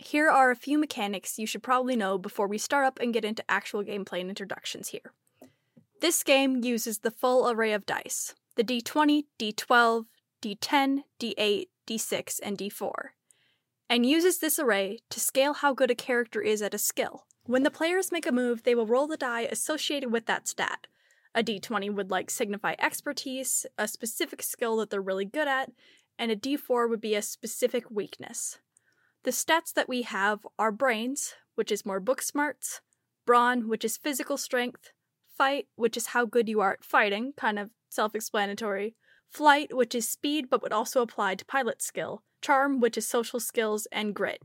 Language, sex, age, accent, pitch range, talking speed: English, female, 10-29, American, 215-265 Hz, 180 wpm